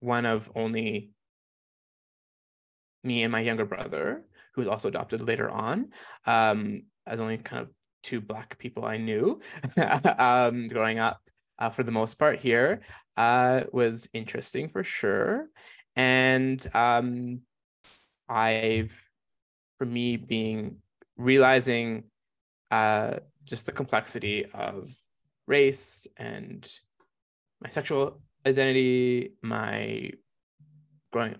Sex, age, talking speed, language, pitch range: male, 20-39, 110 wpm, English, 110-130 Hz